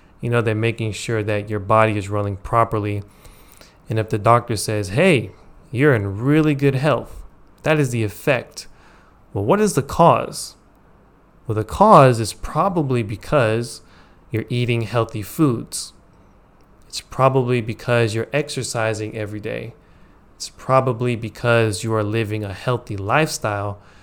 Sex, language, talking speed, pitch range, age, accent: male, English, 140 wpm, 105-130 Hz, 20-39, American